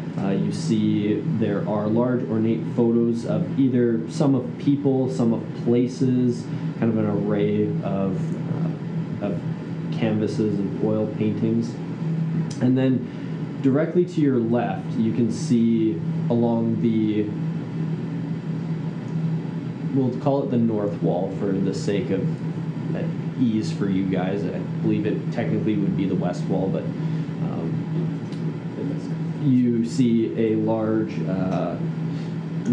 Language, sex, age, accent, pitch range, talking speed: English, male, 20-39, American, 115-160 Hz, 125 wpm